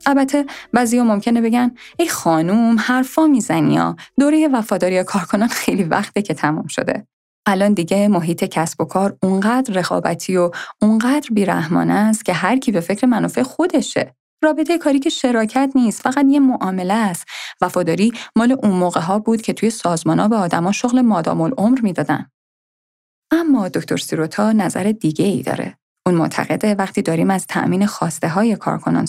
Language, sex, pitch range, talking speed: Persian, female, 175-235 Hz, 155 wpm